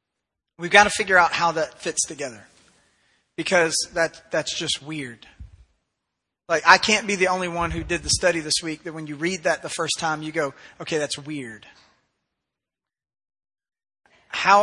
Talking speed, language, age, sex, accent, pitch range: 170 wpm, English, 30-49, male, American, 155-185 Hz